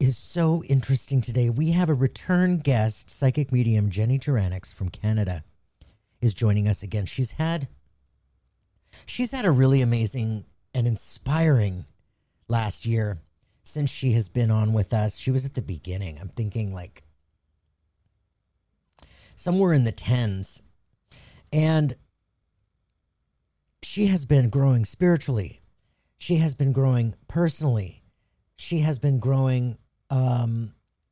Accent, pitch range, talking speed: American, 100-140 Hz, 125 wpm